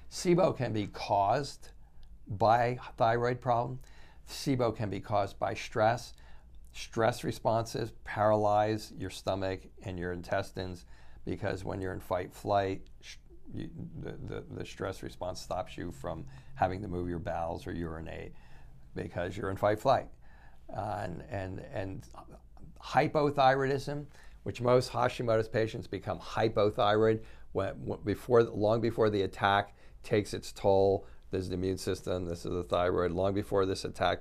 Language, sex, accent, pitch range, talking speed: English, male, American, 90-110 Hz, 140 wpm